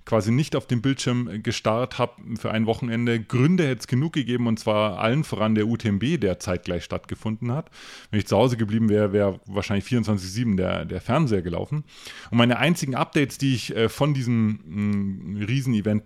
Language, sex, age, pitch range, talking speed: German, male, 30-49, 100-120 Hz, 185 wpm